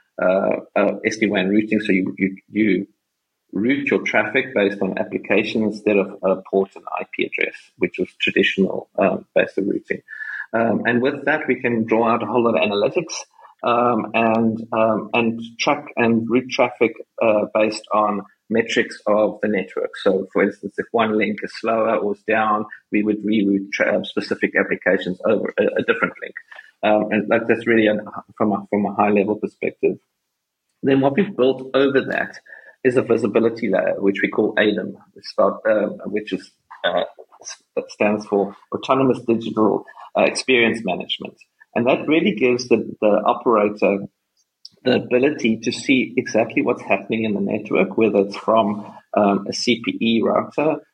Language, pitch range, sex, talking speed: English, 105-125 Hz, male, 165 wpm